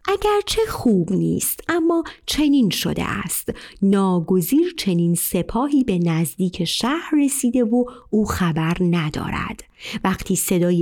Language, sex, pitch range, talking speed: Persian, female, 175-260 Hz, 115 wpm